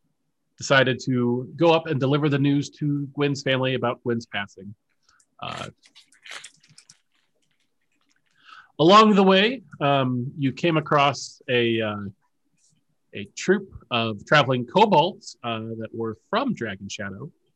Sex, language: male, English